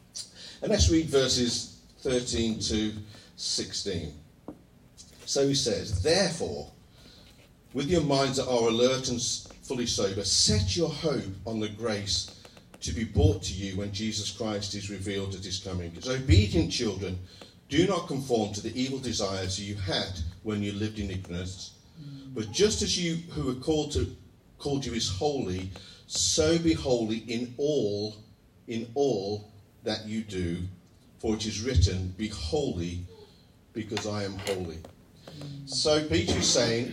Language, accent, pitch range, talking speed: English, British, 95-130 Hz, 150 wpm